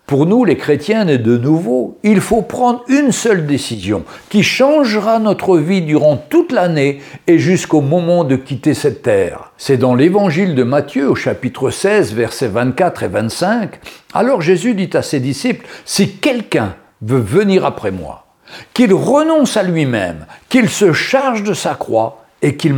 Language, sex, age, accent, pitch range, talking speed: French, male, 60-79, French, 145-225 Hz, 165 wpm